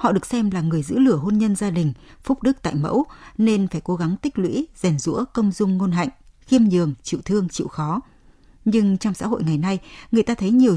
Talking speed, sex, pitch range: 240 wpm, female, 160-230 Hz